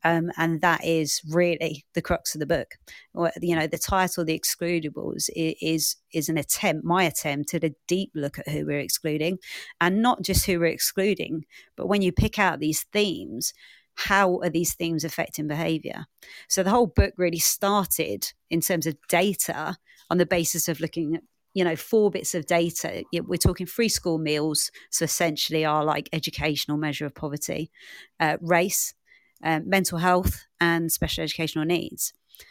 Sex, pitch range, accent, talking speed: female, 160-185 Hz, British, 170 wpm